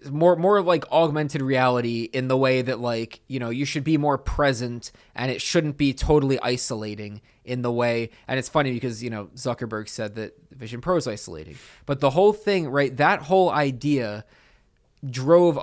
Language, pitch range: English, 120-145 Hz